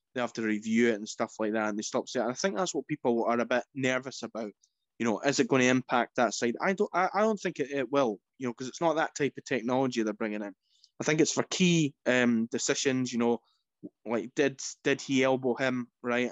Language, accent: English, British